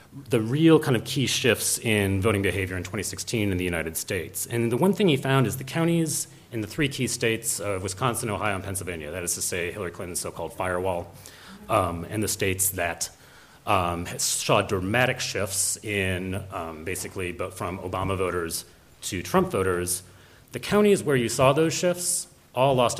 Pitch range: 95-130 Hz